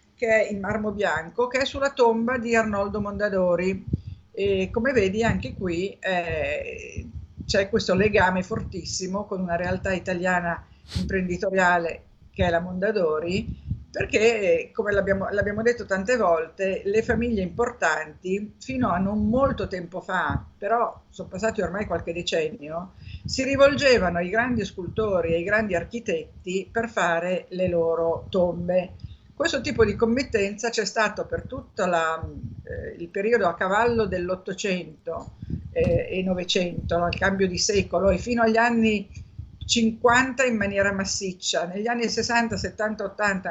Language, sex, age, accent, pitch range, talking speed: Italian, female, 50-69, native, 180-225 Hz, 140 wpm